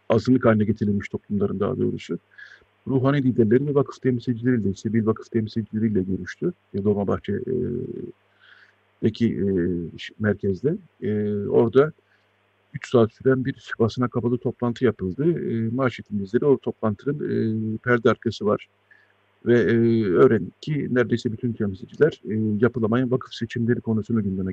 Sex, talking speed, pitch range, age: male, 125 wpm, 105-125 Hz, 50-69